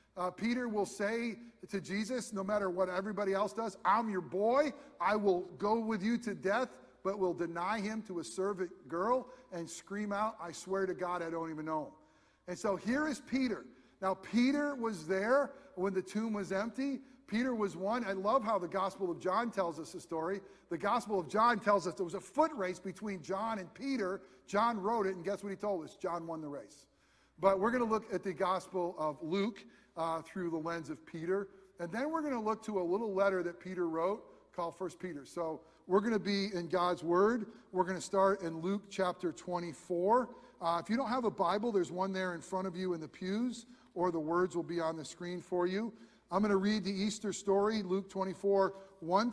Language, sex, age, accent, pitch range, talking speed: English, male, 50-69, American, 175-215 Hz, 225 wpm